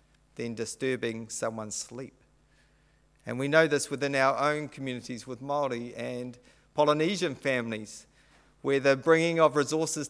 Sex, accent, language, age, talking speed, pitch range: male, Australian, English, 40-59, 130 wpm, 125-150 Hz